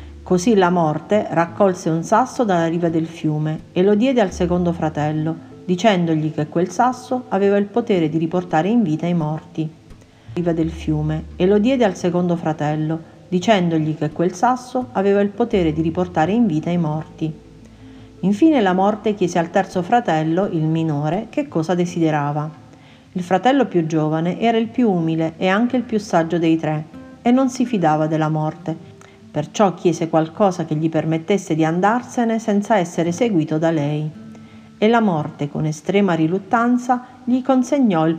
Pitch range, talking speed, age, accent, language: 155-210 Hz, 170 wpm, 40-59, native, Italian